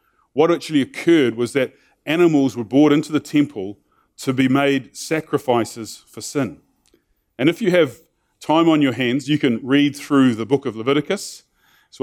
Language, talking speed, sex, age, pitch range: English, 170 wpm, male, 30-49, 120-145 Hz